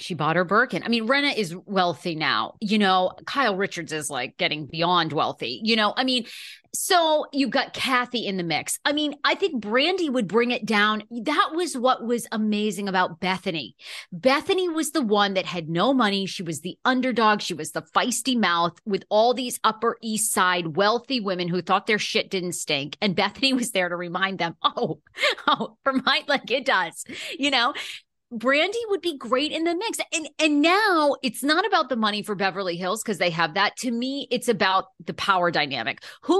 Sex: female